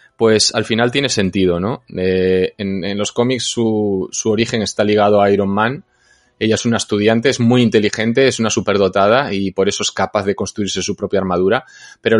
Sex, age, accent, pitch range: male, 20-39, Spanish, 100-115 Hz